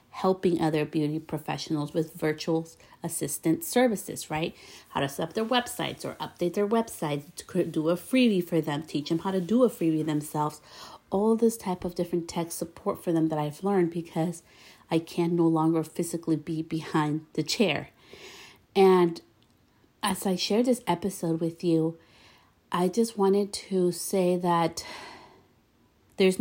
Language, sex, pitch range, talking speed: English, female, 160-185 Hz, 155 wpm